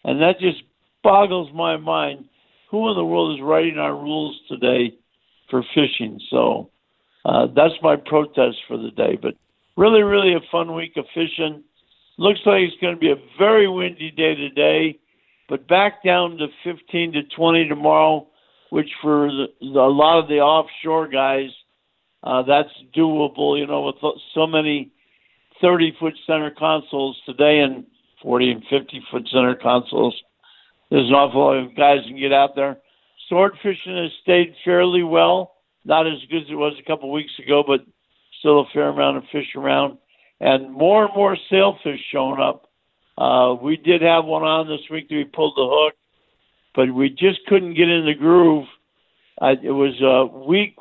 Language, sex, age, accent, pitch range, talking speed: English, male, 60-79, American, 140-170 Hz, 175 wpm